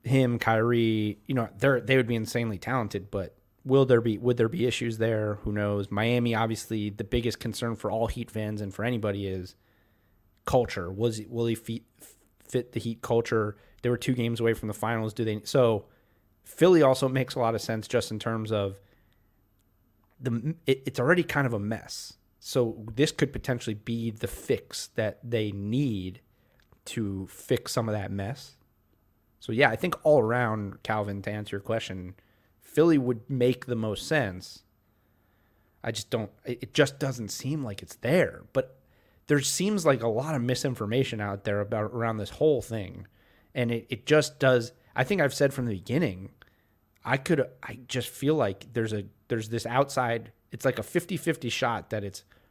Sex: male